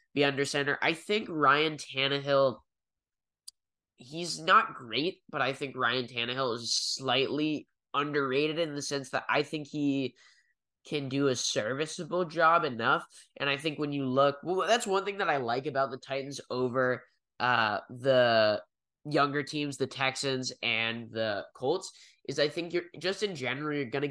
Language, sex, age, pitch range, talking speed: English, male, 10-29, 130-160 Hz, 165 wpm